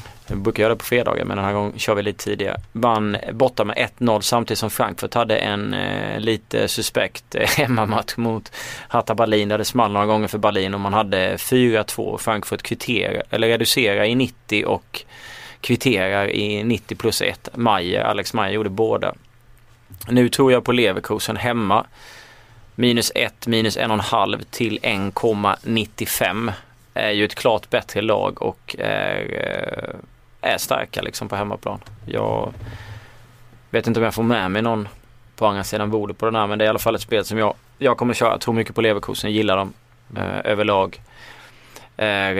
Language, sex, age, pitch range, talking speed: Swedish, male, 30-49, 105-115 Hz, 175 wpm